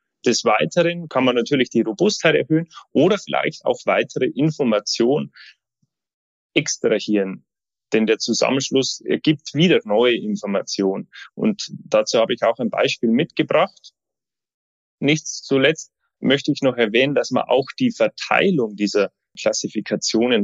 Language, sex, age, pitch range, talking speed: German, male, 30-49, 110-160 Hz, 125 wpm